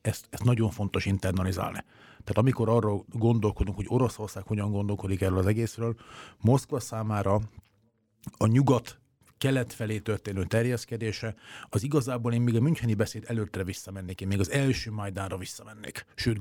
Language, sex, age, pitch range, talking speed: Hungarian, male, 30-49, 105-125 Hz, 145 wpm